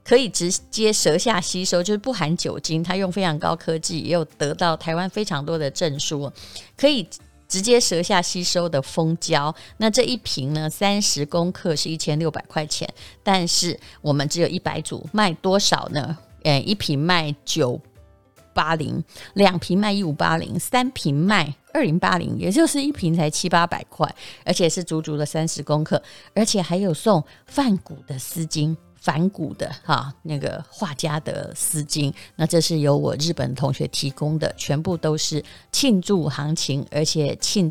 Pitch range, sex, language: 150-185 Hz, female, Chinese